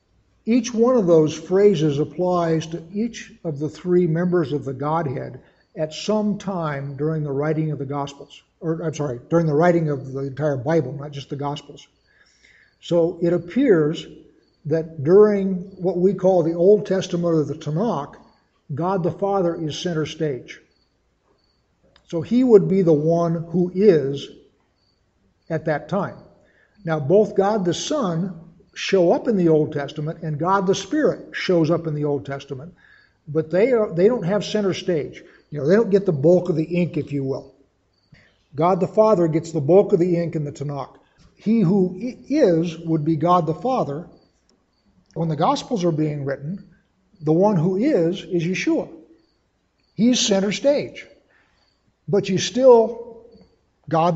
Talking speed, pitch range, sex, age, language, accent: 165 wpm, 155-195 Hz, male, 60-79, English, American